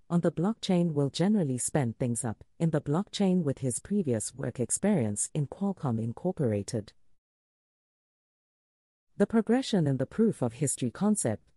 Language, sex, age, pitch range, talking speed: English, female, 40-59, 120-190 Hz, 140 wpm